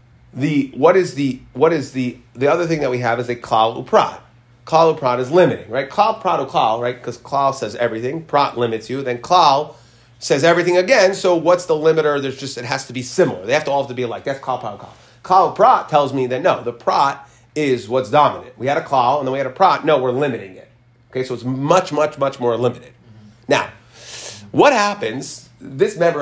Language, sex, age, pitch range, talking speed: English, male, 30-49, 120-150 Hz, 225 wpm